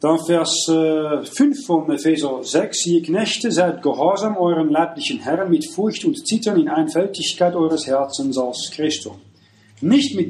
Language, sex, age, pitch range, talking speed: German, male, 40-59, 160-255 Hz, 145 wpm